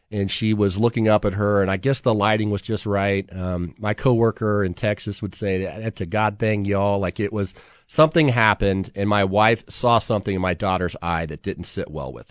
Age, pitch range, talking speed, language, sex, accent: 30-49, 100-115 Hz, 225 wpm, English, male, American